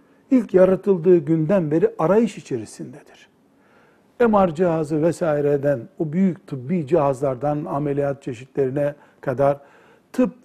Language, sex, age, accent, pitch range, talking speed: Turkish, male, 60-79, native, 145-210 Hz, 100 wpm